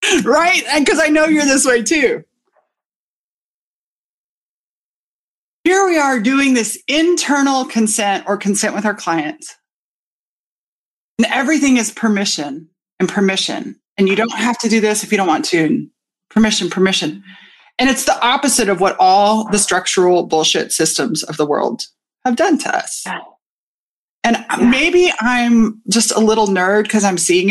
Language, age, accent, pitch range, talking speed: English, 30-49, American, 200-280 Hz, 150 wpm